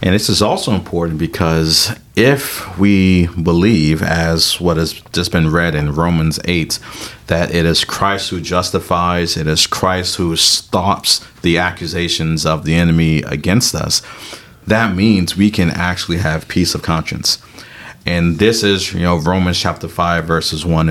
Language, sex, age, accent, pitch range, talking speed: English, male, 40-59, American, 85-100 Hz, 160 wpm